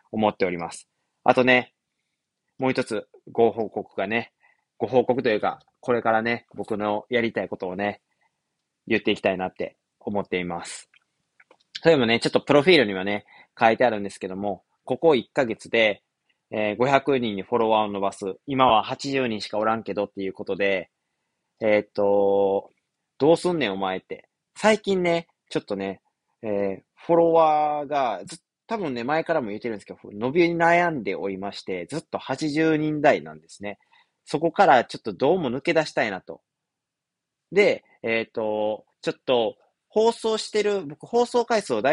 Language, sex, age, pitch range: Japanese, male, 20-39, 100-160 Hz